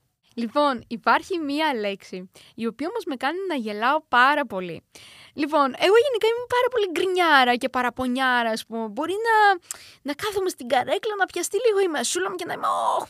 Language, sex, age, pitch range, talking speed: Greek, female, 20-39, 220-320 Hz, 185 wpm